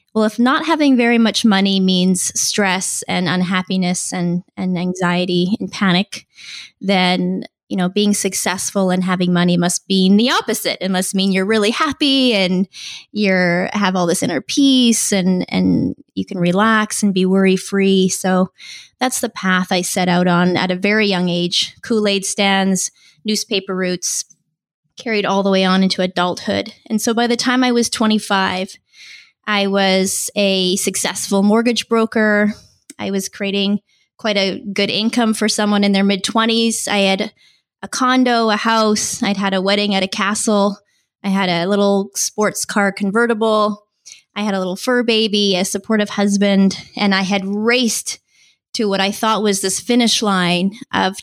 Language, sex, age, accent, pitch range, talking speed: English, female, 20-39, American, 185-220 Hz, 165 wpm